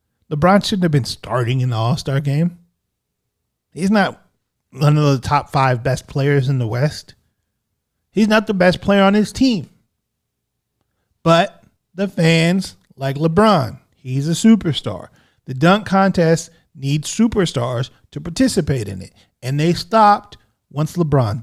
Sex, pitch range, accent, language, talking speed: male, 135-195 Hz, American, English, 145 wpm